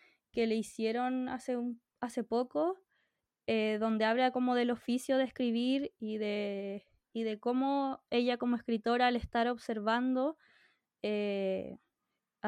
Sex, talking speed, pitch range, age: female, 130 wpm, 220-250 Hz, 20-39